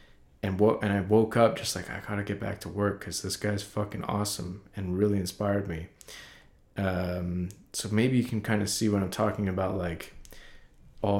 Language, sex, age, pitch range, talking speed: English, male, 20-39, 90-110 Hz, 205 wpm